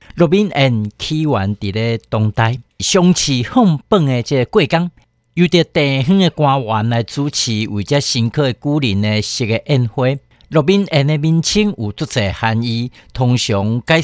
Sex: male